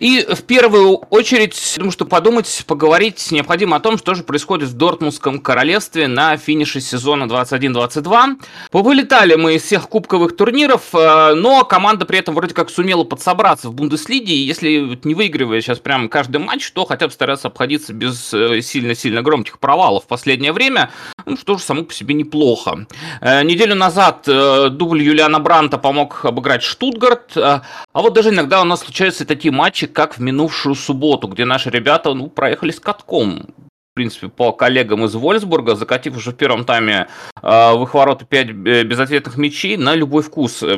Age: 30-49